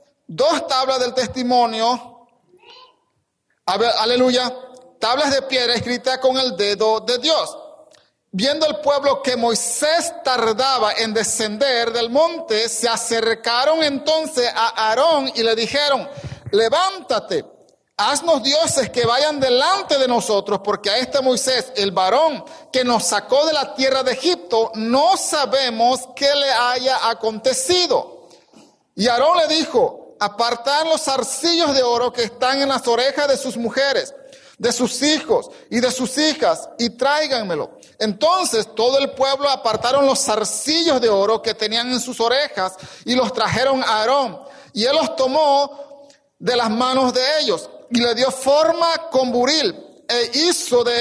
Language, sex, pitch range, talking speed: English, male, 235-300 Hz, 145 wpm